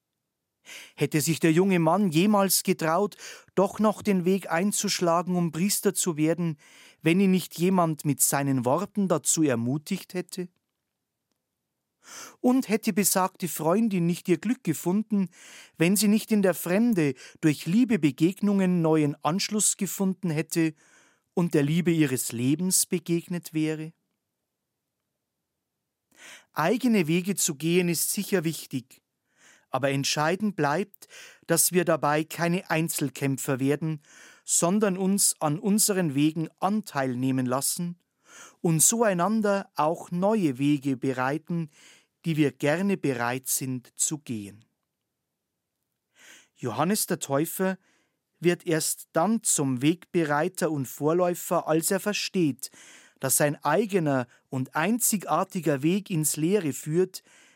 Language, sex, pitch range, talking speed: German, male, 150-195 Hz, 120 wpm